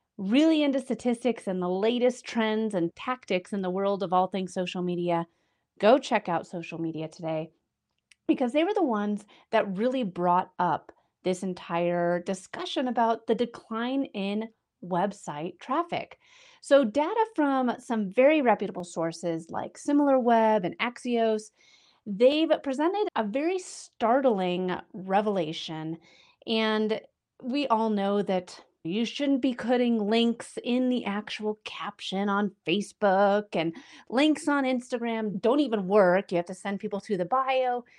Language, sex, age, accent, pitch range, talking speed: English, female, 30-49, American, 195-255 Hz, 140 wpm